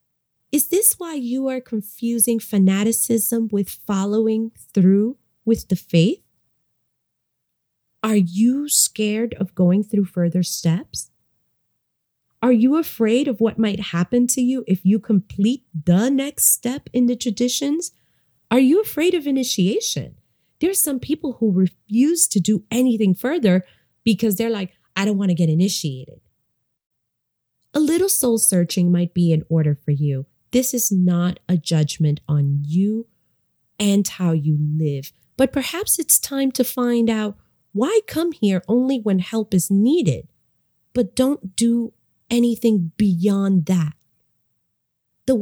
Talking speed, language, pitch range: 140 wpm, English, 185-255 Hz